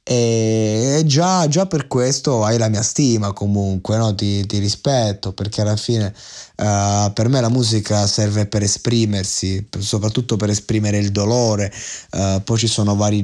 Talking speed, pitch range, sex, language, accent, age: 160 wpm, 105-125 Hz, male, Italian, native, 20-39